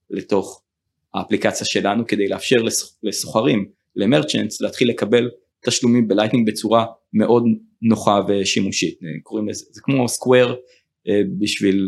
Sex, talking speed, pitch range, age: male, 100 wpm, 100-130 Hz, 30-49